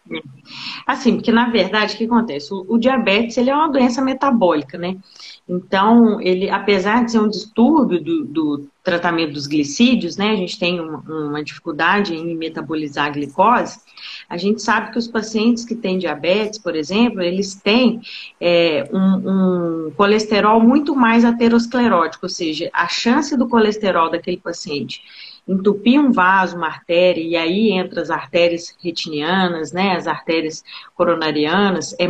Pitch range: 175-235 Hz